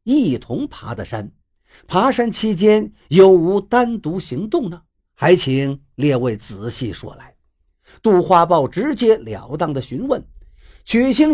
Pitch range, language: 140-235 Hz, Chinese